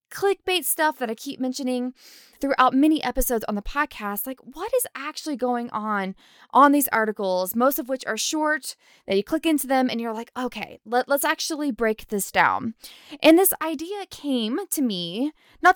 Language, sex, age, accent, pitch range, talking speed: English, female, 20-39, American, 215-295 Hz, 180 wpm